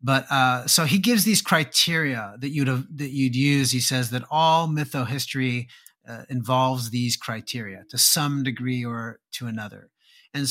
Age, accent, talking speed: 30-49, American, 170 wpm